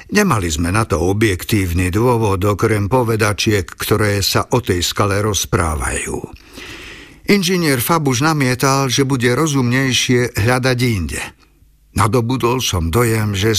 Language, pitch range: Slovak, 105-125 Hz